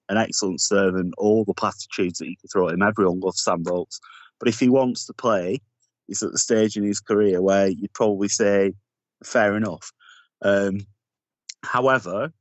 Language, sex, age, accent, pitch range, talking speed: English, male, 30-49, British, 95-120 Hz, 185 wpm